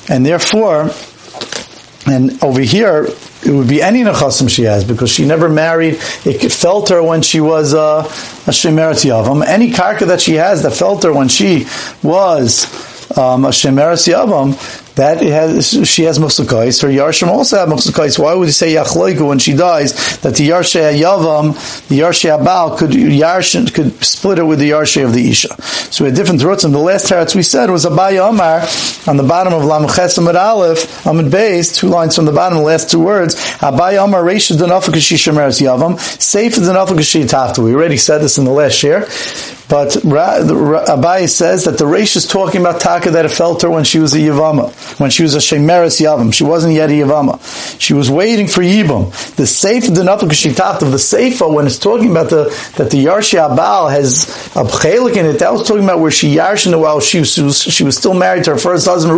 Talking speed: 200 wpm